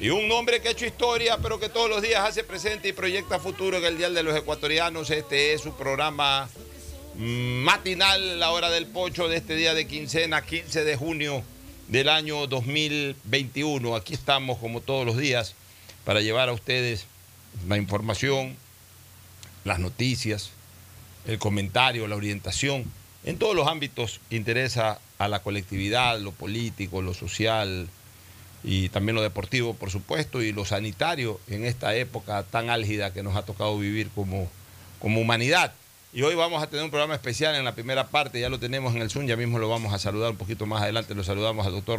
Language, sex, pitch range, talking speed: Spanish, male, 105-140 Hz, 185 wpm